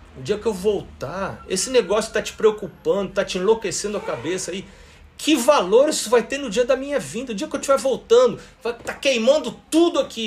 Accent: Brazilian